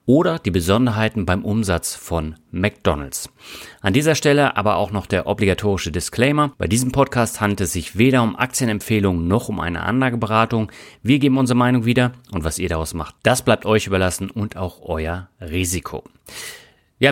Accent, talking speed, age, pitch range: German, 170 wpm, 30-49, 95-125 Hz